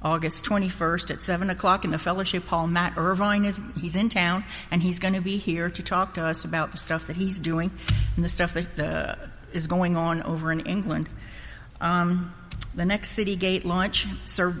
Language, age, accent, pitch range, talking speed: English, 50-69, American, 160-180 Hz, 195 wpm